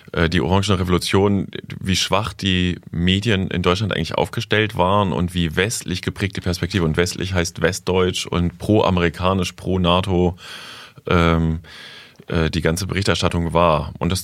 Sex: male